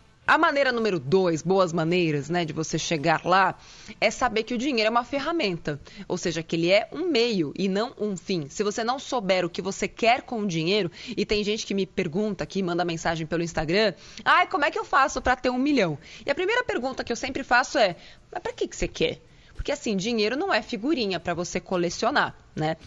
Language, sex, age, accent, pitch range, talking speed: Portuguese, female, 20-39, Brazilian, 180-245 Hz, 230 wpm